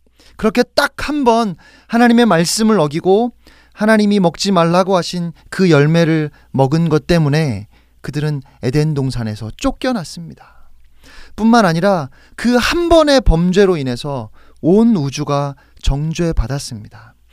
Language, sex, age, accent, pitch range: Korean, male, 30-49, native, 130-205 Hz